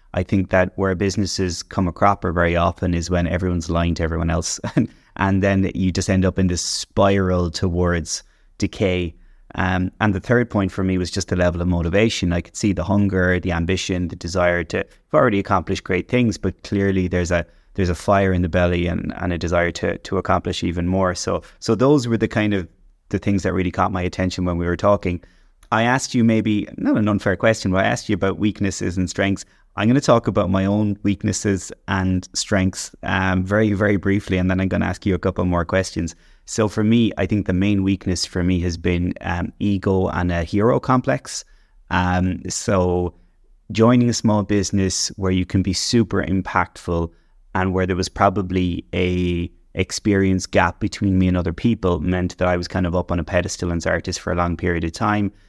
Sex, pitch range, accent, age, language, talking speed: male, 90-100 Hz, Irish, 20-39, English, 210 wpm